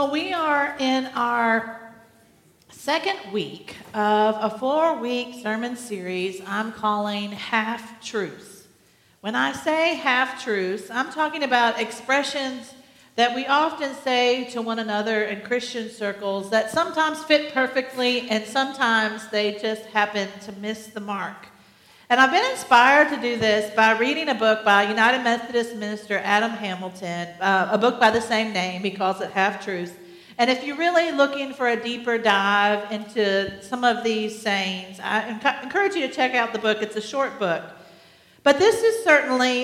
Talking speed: 160 wpm